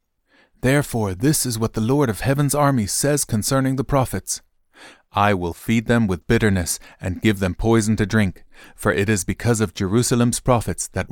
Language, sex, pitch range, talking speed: English, male, 100-130 Hz, 180 wpm